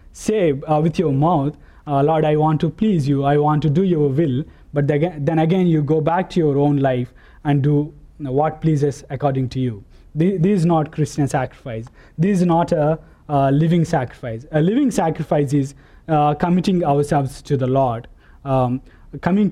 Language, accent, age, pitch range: English, Indian, 20-39, 130-155 Hz